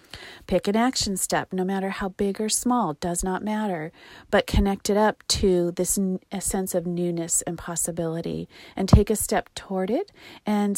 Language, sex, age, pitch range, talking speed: English, female, 40-59, 180-215 Hz, 180 wpm